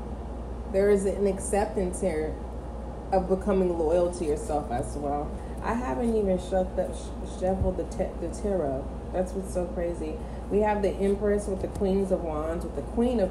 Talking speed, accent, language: 160 wpm, American, English